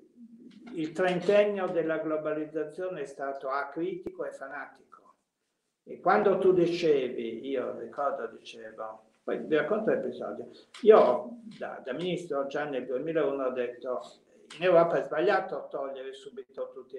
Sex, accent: male, native